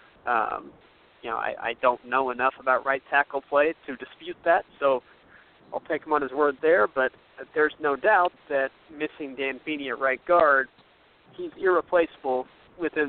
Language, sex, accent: English, male, American